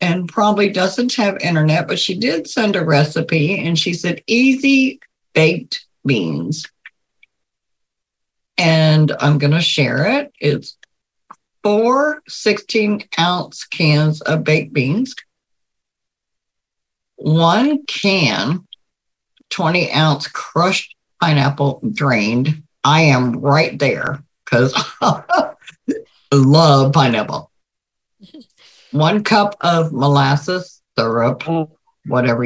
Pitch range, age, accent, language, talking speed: 150-220 Hz, 50-69, American, English, 90 wpm